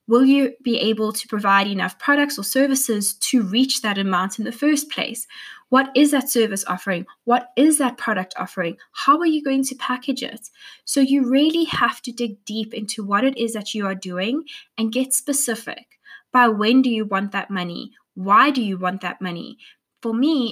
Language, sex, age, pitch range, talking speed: English, female, 20-39, 220-275 Hz, 200 wpm